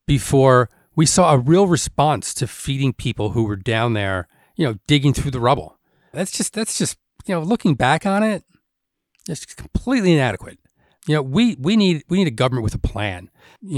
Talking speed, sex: 200 wpm, male